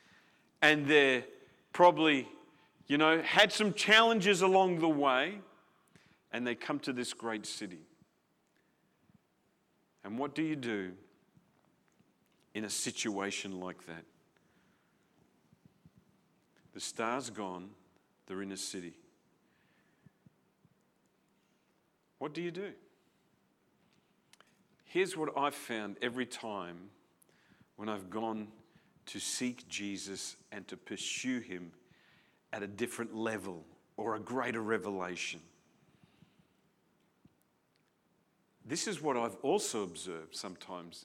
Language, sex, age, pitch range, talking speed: English, male, 50-69, 100-145 Hz, 100 wpm